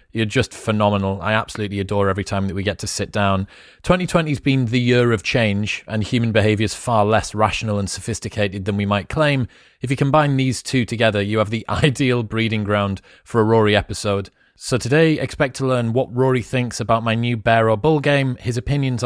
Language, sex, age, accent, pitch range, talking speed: English, male, 30-49, British, 105-130 Hz, 205 wpm